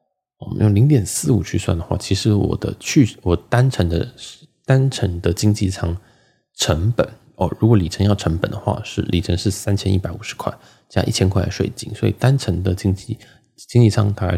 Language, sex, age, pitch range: Chinese, male, 20-39, 85-110 Hz